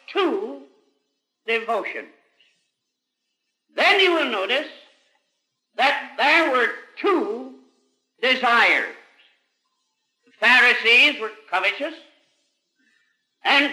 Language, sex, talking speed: English, male, 70 wpm